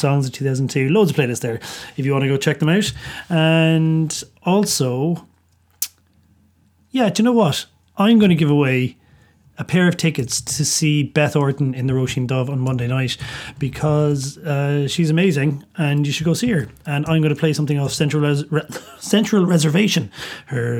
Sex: male